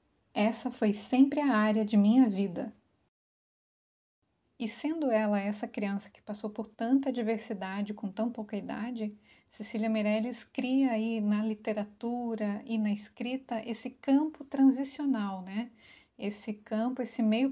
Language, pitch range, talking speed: Portuguese, 210-255 Hz, 135 wpm